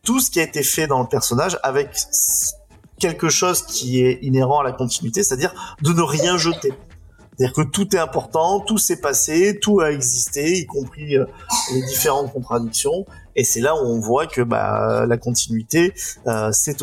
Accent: French